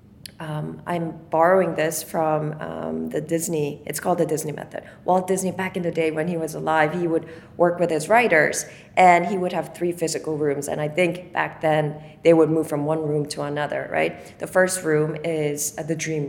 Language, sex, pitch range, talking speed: English, female, 155-185 Hz, 210 wpm